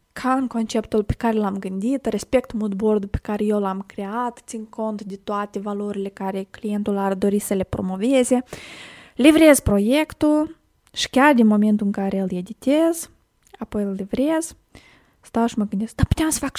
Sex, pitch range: female, 215-275 Hz